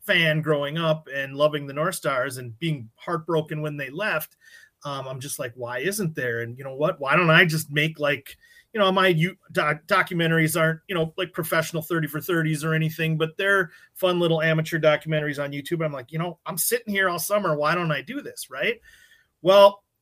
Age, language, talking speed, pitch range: 30-49, English, 215 wpm, 145-195 Hz